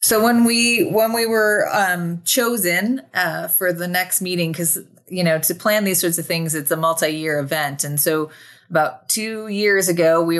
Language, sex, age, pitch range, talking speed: English, female, 30-49, 145-165 Hz, 190 wpm